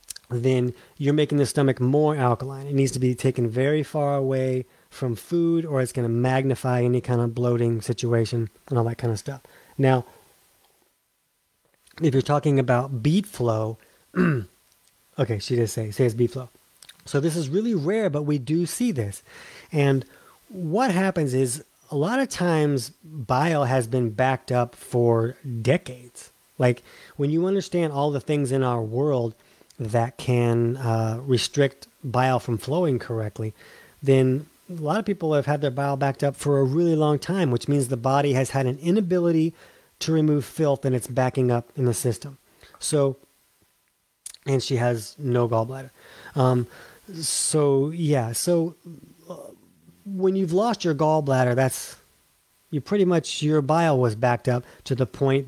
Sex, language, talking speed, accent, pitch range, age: male, English, 165 wpm, American, 120-150 Hz, 30-49